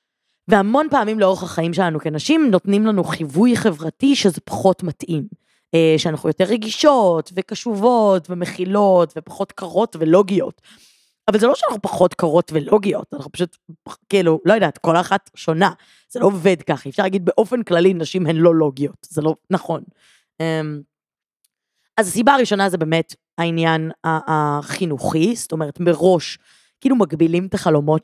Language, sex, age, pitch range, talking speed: Hebrew, female, 20-39, 160-200 Hz, 140 wpm